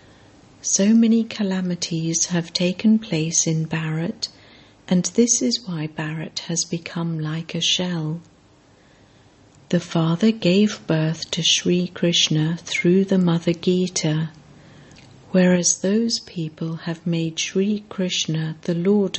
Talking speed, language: 120 wpm, English